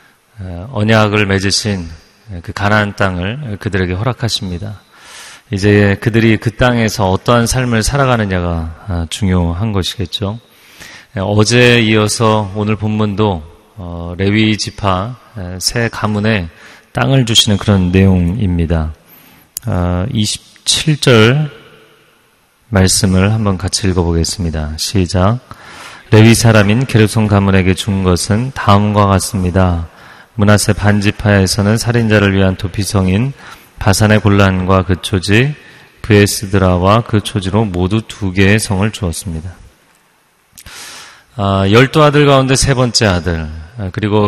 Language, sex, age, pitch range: Korean, male, 30-49, 95-110 Hz